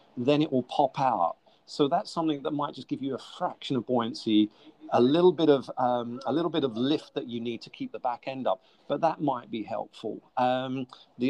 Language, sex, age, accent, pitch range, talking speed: English, male, 40-59, British, 125-155 Hz, 230 wpm